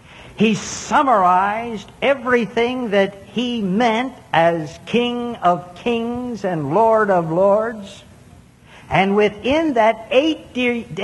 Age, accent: 60-79, American